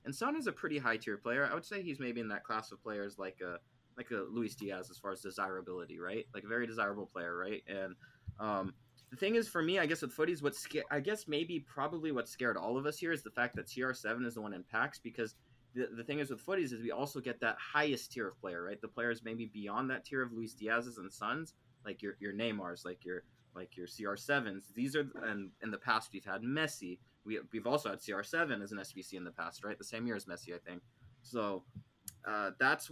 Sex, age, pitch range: male, 20-39, 105-140 Hz